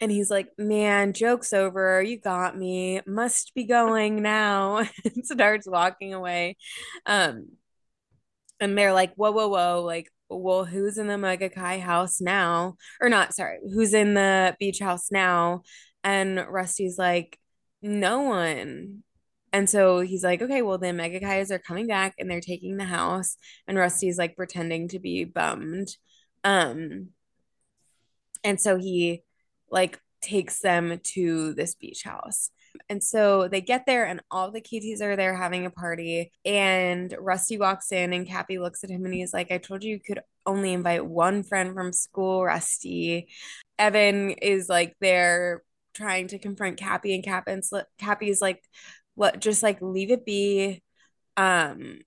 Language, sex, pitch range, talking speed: English, female, 180-205 Hz, 160 wpm